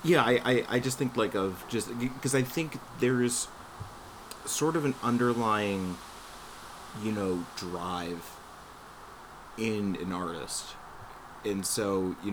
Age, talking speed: 30-49, 130 wpm